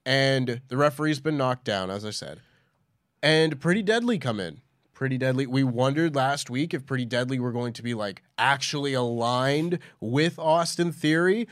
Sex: male